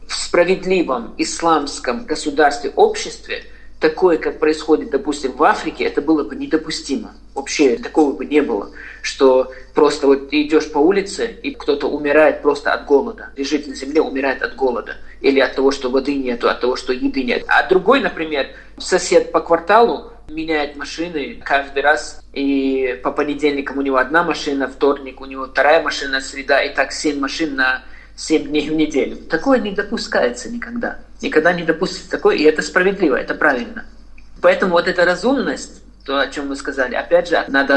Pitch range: 135-170 Hz